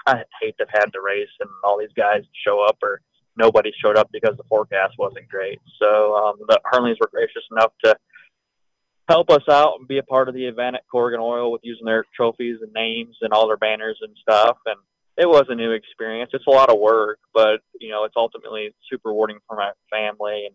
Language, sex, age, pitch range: English, male, 20-39, 105-130 Hz